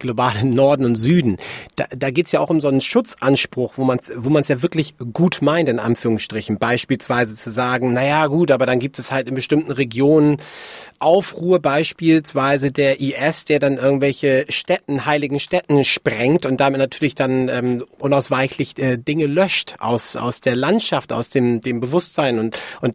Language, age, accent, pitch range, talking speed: German, 30-49, German, 130-155 Hz, 180 wpm